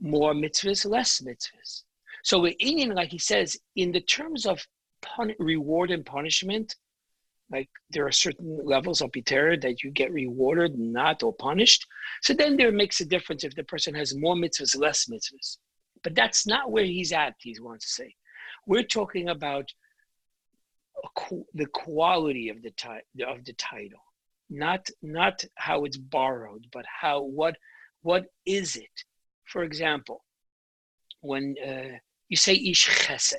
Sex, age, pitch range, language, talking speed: male, 50-69, 145-230 Hz, English, 155 wpm